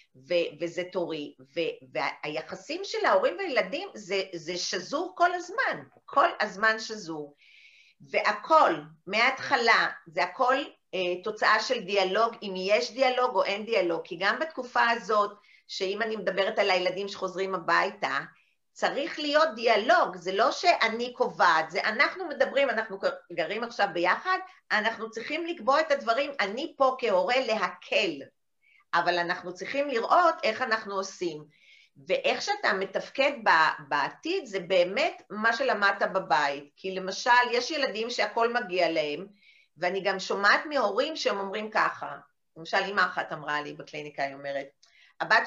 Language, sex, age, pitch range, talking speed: Hebrew, female, 50-69, 185-265 Hz, 135 wpm